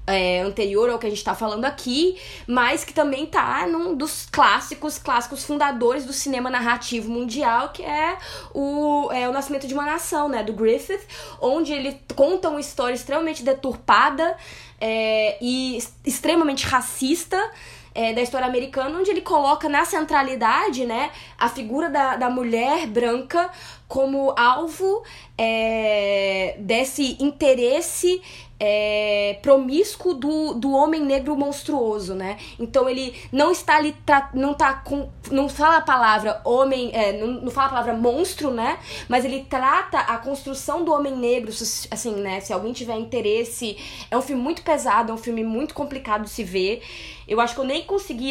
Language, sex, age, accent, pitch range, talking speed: Portuguese, female, 10-29, Brazilian, 230-295 Hz, 150 wpm